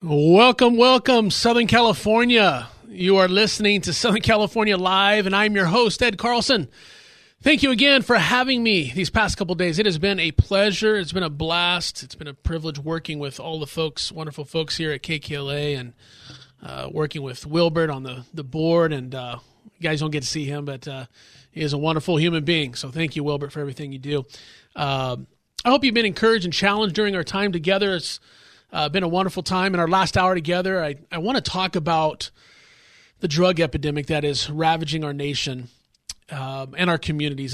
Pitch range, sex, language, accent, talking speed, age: 150-200 Hz, male, English, American, 200 wpm, 30-49